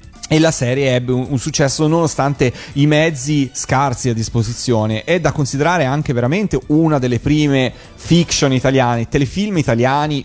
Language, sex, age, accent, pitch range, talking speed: Italian, male, 30-49, native, 115-150 Hz, 140 wpm